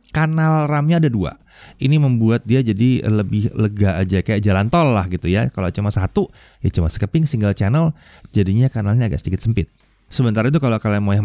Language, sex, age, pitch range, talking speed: Indonesian, male, 30-49, 100-140 Hz, 190 wpm